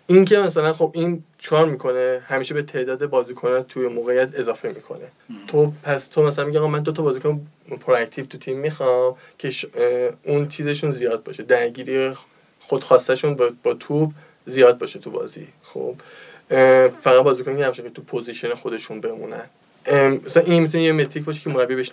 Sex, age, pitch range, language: male, 20-39, 130-185 Hz, Persian